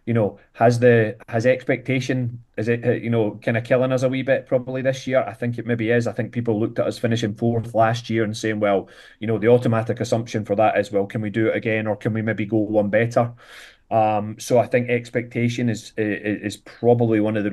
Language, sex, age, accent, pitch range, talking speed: English, male, 30-49, British, 105-120 Hz, 245 wpm